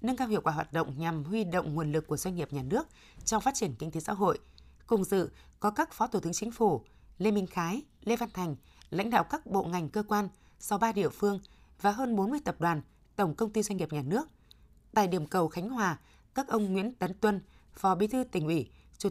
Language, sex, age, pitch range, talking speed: Vietnamese, female, 20-39, 170-220 Hz, 240 wpm